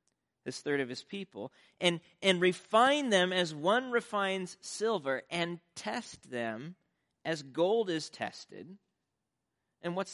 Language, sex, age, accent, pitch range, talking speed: English, male, 40-59, American, 125-175 Hz, 130 wpm